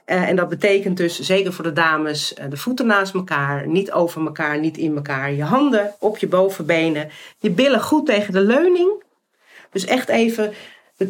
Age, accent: 40-59, Dutch